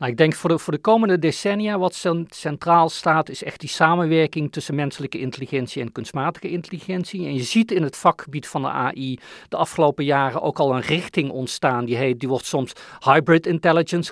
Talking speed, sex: 185 wpm, male